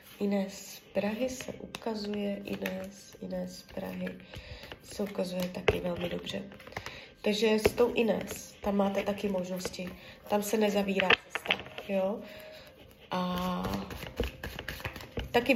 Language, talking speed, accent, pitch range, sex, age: Czech, 110 wpm, native, 180-230 Hz, female, 20-39